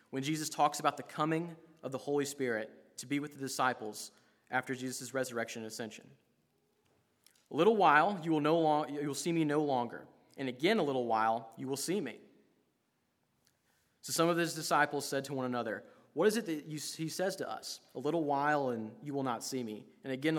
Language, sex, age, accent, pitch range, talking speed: English, male, 30-49, American, 120-150 Hz, 195 wpm